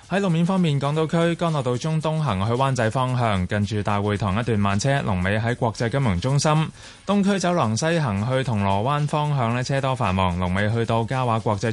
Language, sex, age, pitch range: Chinese, male, 20-39, 105-140 Hz